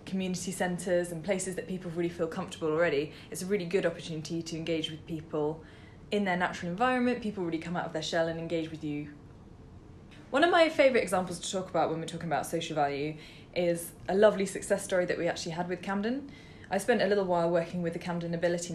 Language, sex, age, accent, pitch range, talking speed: English, female, 20-39, British, 160-185 Hz, 220 wpm